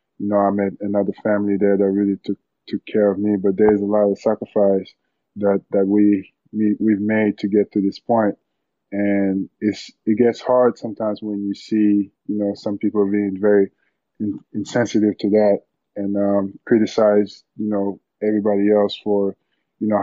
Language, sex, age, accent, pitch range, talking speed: English, male, 20-39, American, 100-110 Hz, 180 wpm